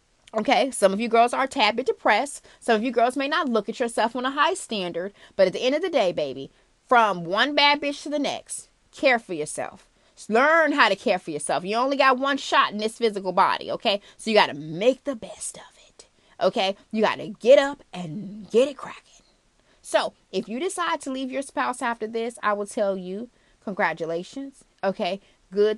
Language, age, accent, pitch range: English, 30-49, American, 200-265 Hz